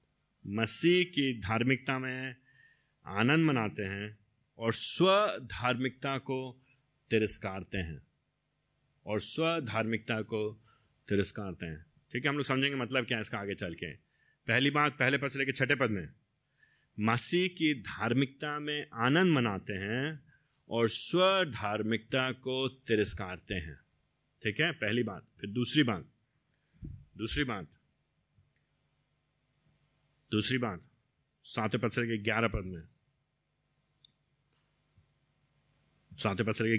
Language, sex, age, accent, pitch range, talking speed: Hindi, male, 30-49, native, 105-140 Hz, 120 wpm